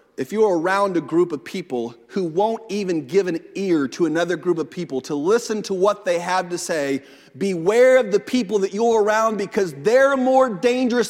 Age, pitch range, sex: 40-59, 180-280 Hz, male